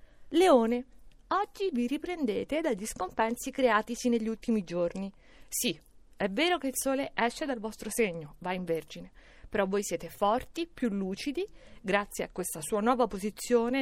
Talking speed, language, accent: 150 wpm, Italian, native